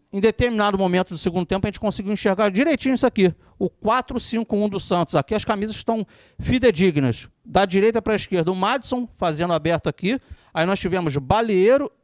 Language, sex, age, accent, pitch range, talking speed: Portuguese, male, 40-59, Brazilian, 175-215 Hz, 180 wpm